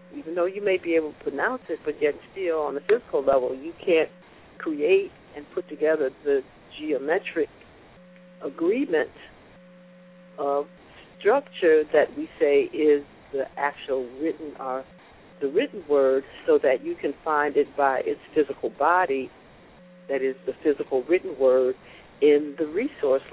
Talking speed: 140 wpm